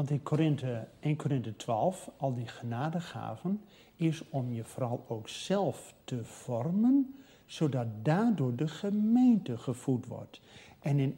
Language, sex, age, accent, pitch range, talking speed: Dutch, male, 50-69, Dutch, 135-220 Hz, 135 wpm